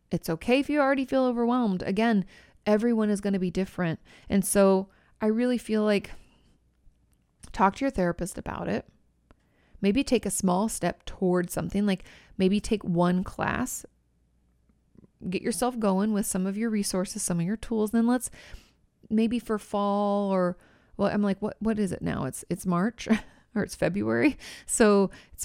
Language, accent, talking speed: English, American, 170 wpm